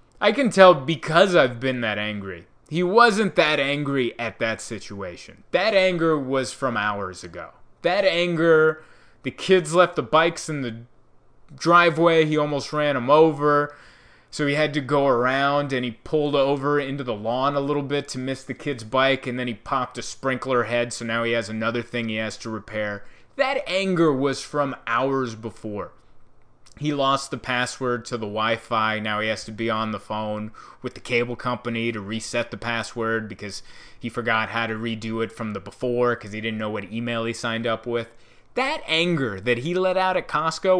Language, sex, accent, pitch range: English, male, American, 115-150 Hz